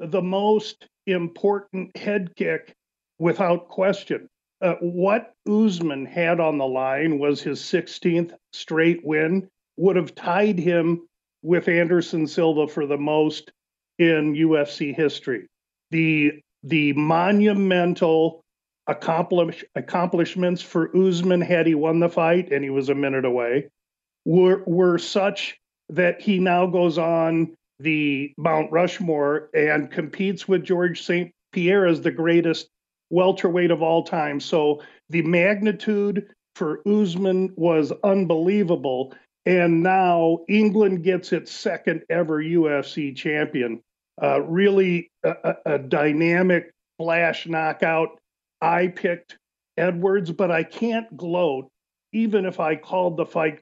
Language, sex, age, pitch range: English, male, 50-69, 160-185 Hz